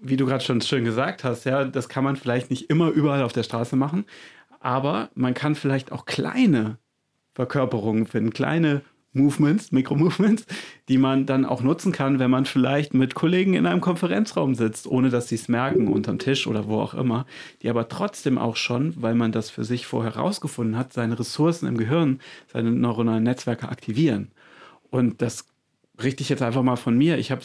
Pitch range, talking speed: 120-145 Hz, 190 wpm